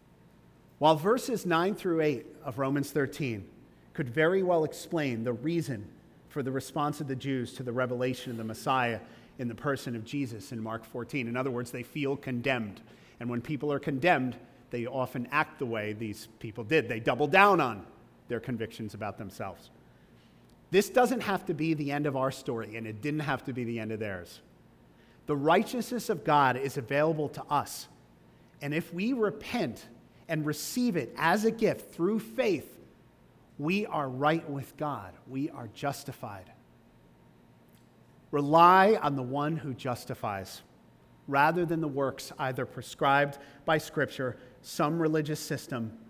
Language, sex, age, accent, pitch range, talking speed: English, male, 40-59, American, 120-180 Hz, 165 wpm